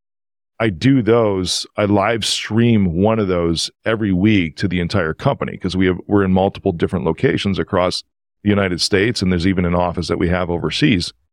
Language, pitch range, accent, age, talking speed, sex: English, 90-125 Hz, American, 40-59, 190 wpm, male